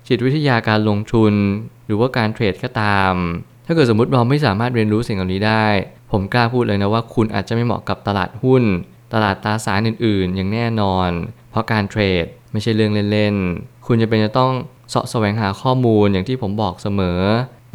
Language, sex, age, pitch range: Thai, male, 20-39, 100-125 Hz